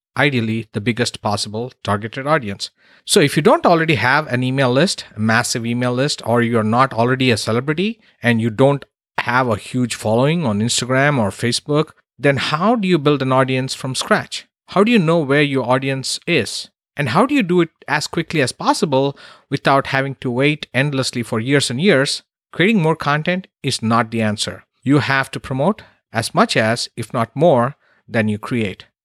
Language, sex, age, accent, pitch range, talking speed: English, male, 50-69, Indian, 115-145 Hz, 190 wpm